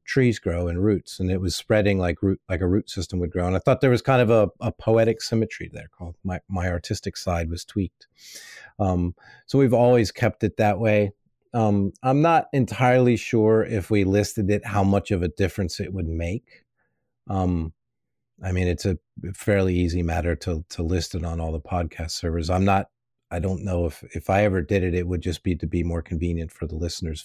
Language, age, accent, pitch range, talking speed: English, 40-59, American, 85-105 Hz, 220 wpm